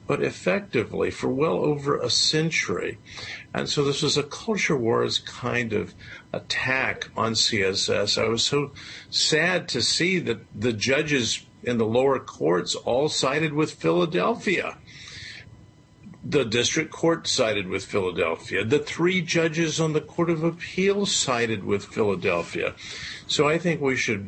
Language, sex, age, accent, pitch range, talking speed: English, male, 50-69, American, 105-150 Hz, 145 wpm